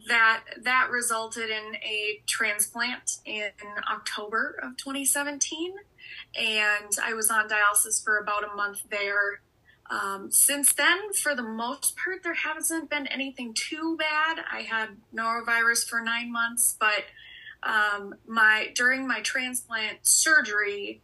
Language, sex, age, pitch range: English, female, 20-39, 210-255 Hz